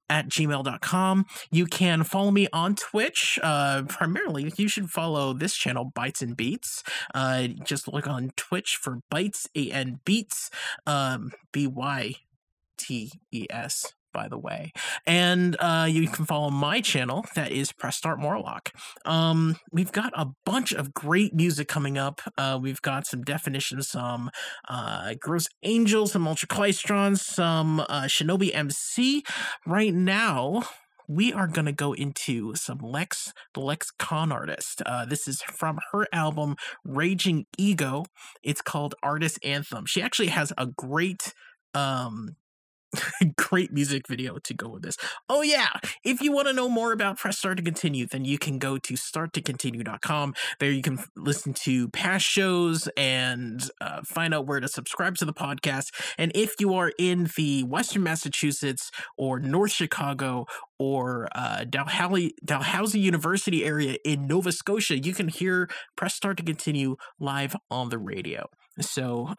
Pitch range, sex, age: 135-185 Hz, male, 30-49